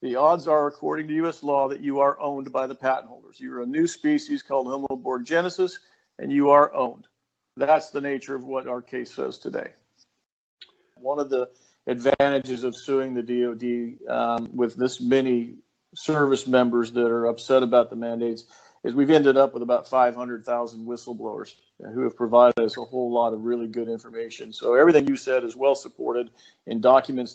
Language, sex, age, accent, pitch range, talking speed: English, male, 50-69, American, 120-140 Hz, 180 wpm